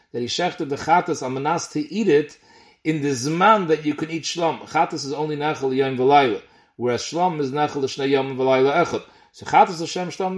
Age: 40-59